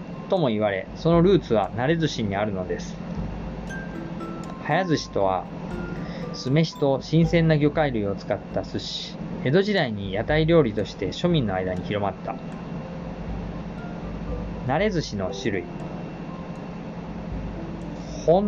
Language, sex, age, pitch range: Japanese, male, 20-39, 110-175 Hz